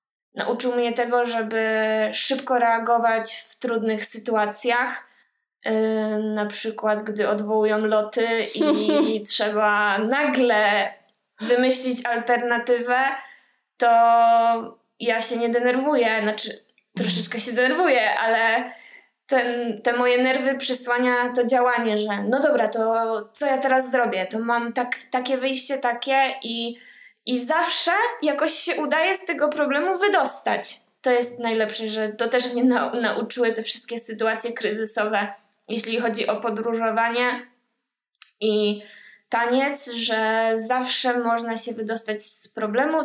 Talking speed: 115 wpm